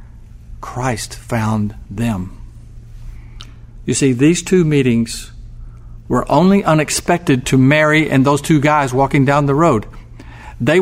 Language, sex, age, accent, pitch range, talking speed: English, male, 50-69, American, 115-150 Hz, 120 wpm